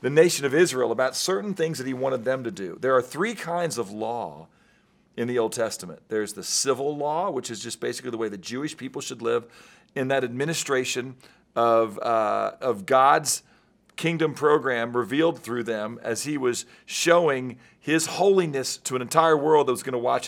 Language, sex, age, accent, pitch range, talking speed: English, male, 40-59, American, 125-165 Hz, 190 wpm